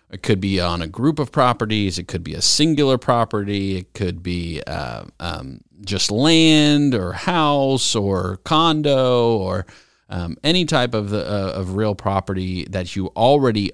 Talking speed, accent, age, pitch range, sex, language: 160 wpm, American, 40-59, 95-120 Hz, male, English